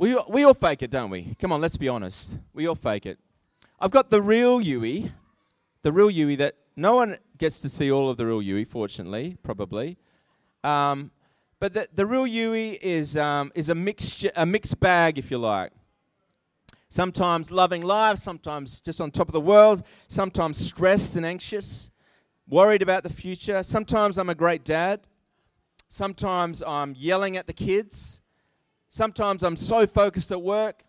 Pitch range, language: 160-245 Hz, English